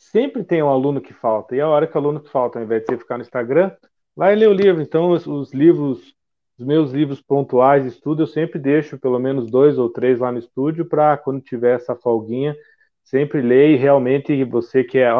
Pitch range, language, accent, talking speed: 125-165 Hz, Portuguese, Brazilian, 225 wpm